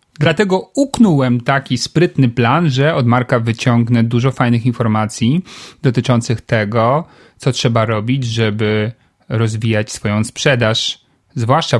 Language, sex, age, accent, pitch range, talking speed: Polish, male, 30-49, native, 120-140 Hz, 110 wpm